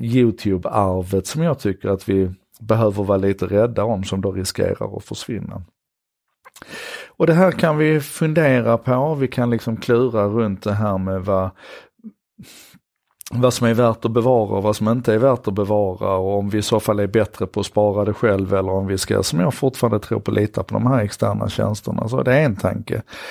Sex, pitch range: male, 95-120 Hz